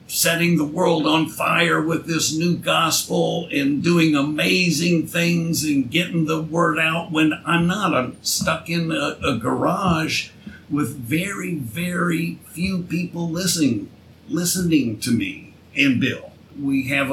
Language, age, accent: English, 50-69, American